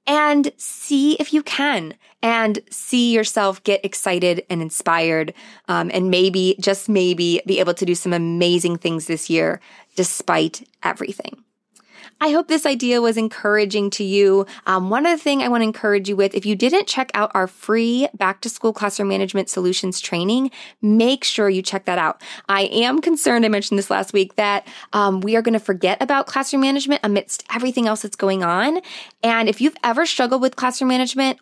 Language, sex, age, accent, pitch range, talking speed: English, female, 20-39, American, 190-250 Hz, 185 wpm